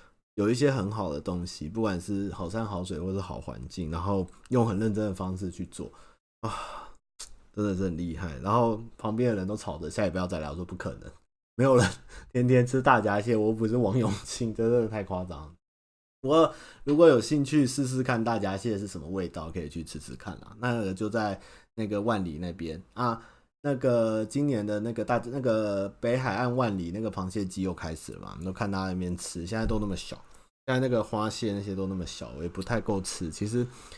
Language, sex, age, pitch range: Chinese, male, 30-49, 90-115 Hz